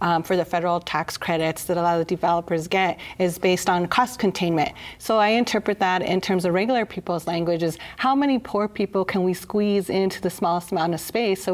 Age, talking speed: 30-49, 220 wpm